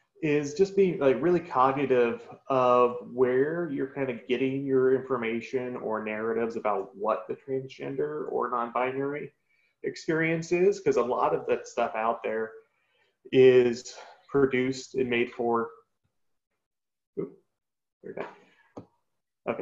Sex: male